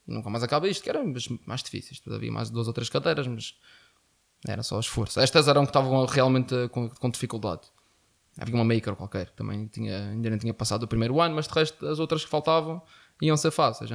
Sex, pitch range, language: male, 115-140 Hz, Portuguese